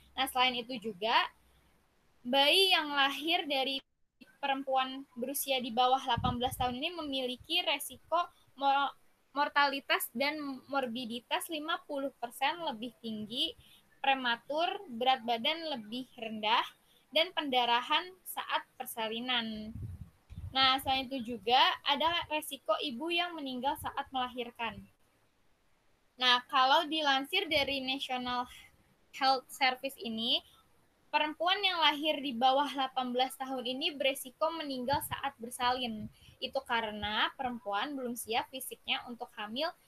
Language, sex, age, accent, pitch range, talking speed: Indonesian, female, 10-29, native, 245-290 Hz, 105 wpm